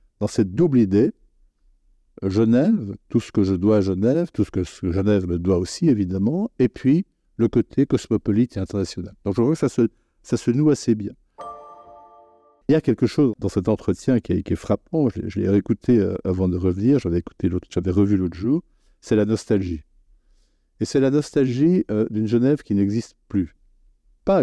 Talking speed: 190 wpm